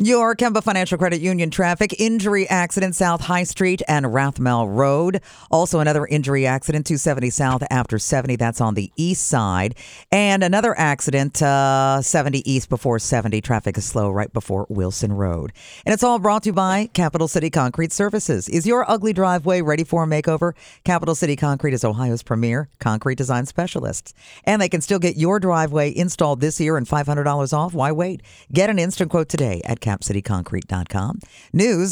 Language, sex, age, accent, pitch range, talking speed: English, female, 50-69, American, 130-185 Hz, 175 wpm